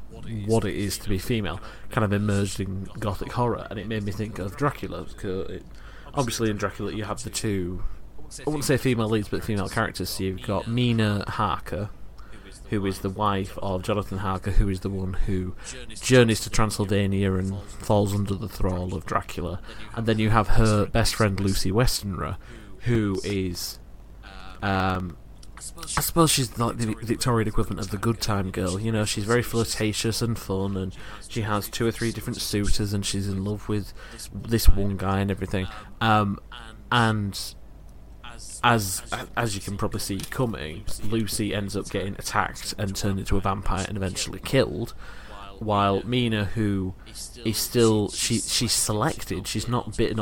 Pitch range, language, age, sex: 95-110 Hz, English, 30-49, male